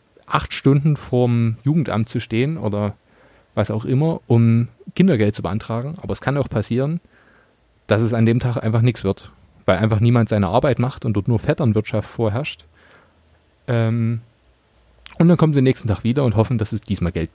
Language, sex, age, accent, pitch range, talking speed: German, male, 30-49, German, 110-130 Hz, 175 wpm